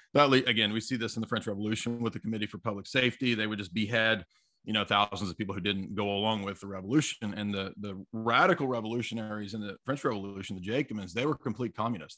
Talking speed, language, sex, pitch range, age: 230 wpm, English, male, 100-120 Hz, 30-49